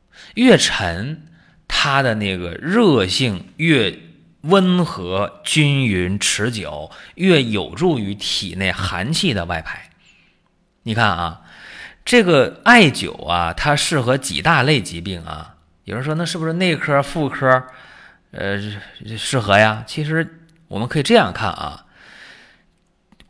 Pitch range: 95-155 Hz